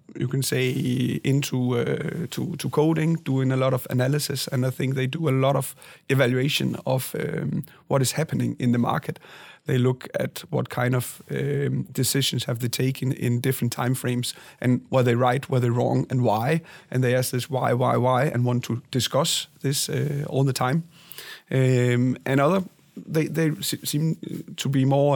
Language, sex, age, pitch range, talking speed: English, male, 30-49, 130-155 Hz, 190 wpm